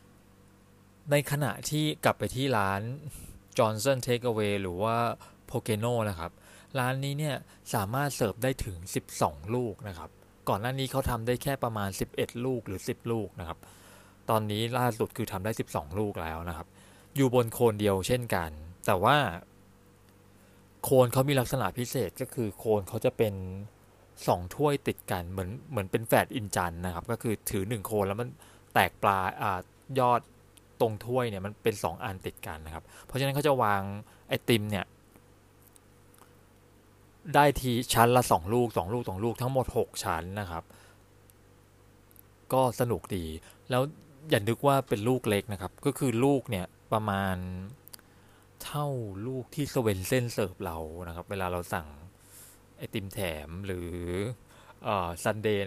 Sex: male